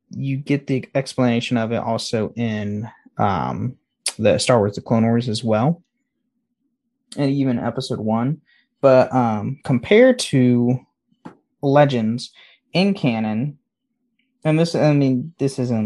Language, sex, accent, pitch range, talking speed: English, male, American, 110-140 Hz, 130 wpm